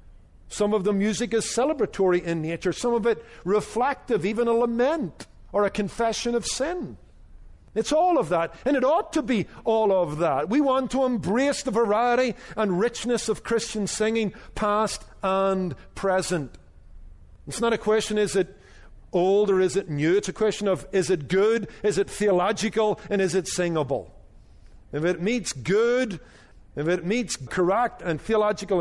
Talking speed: 170 wpm